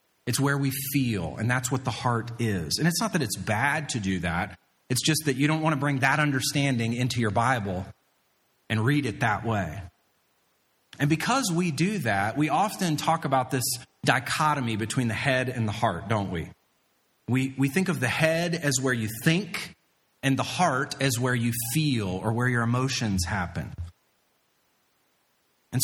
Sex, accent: male, American